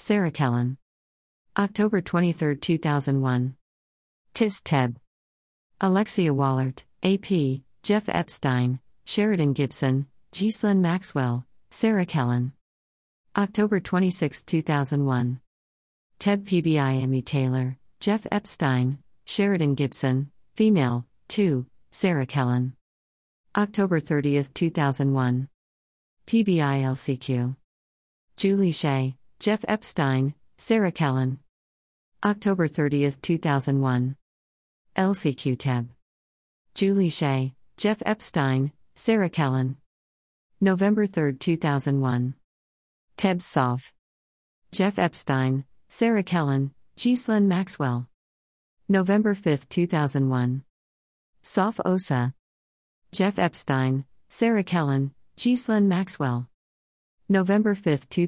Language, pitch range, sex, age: English, 125-185 Hz, female, 50-69